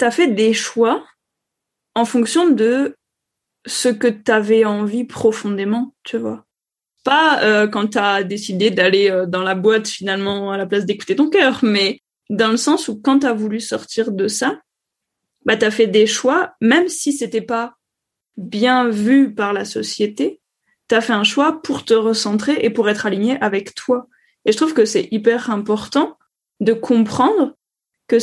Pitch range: 220-270 Hz